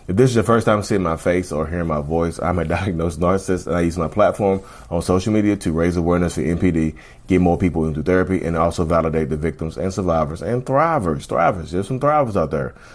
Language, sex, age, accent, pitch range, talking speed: English, male, 30-49, American, 85-110 Hz, 230 wpm